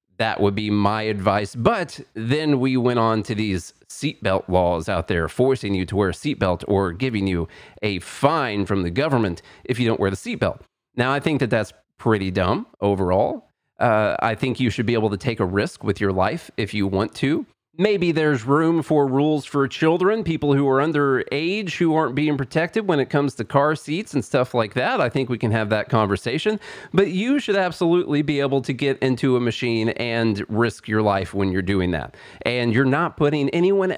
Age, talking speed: 30-49, 210 wpm